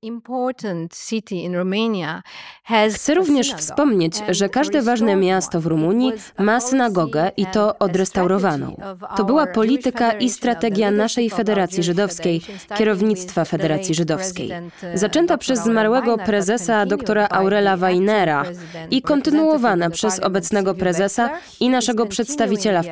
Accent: native